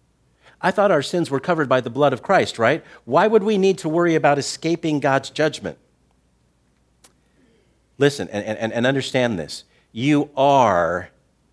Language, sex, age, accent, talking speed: English, male, 50-69, American, 155 wpm